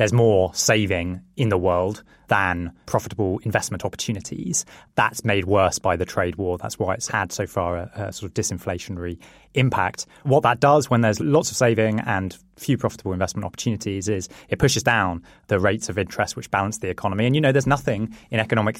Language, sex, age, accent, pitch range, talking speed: English, male, 20-39, British, 95-115 Hz, 195 wpm